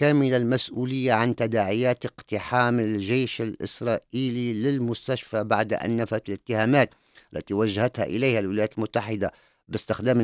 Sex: male